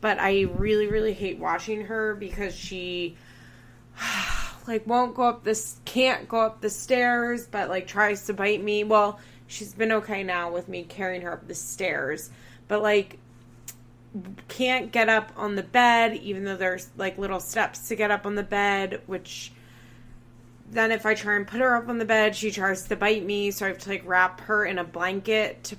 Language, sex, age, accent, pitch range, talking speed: English, female, 20-39, American, 180-215 Hz, 200 wpm